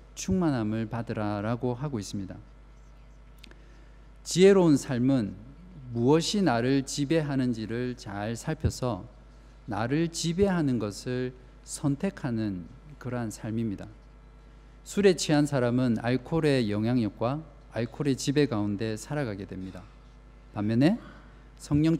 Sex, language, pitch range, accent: male, Korean, 115-150 Hz, native